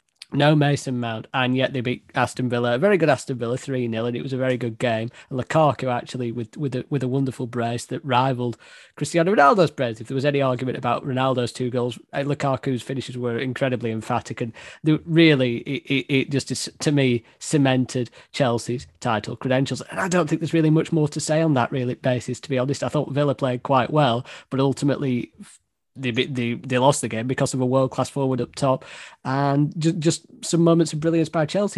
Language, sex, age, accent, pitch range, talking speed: English, male, 30-49, British, 125-155 Hz, 210 wpm